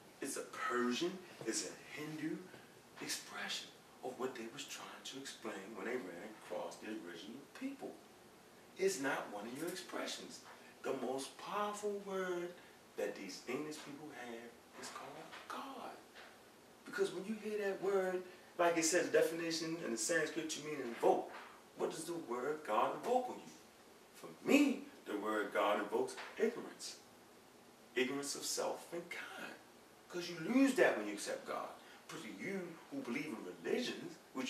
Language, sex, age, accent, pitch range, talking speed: English, male, 40-59, American, 135-195 Hz, 160 wpm